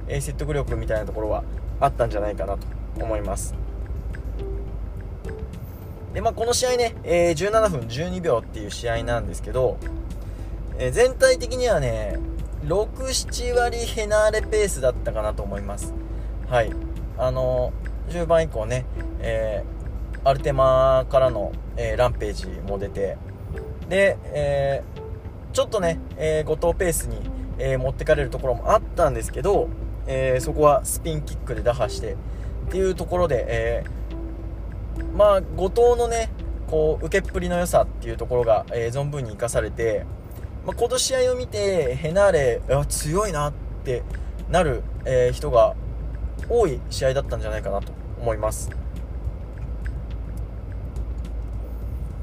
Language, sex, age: Japanese, male, 20-39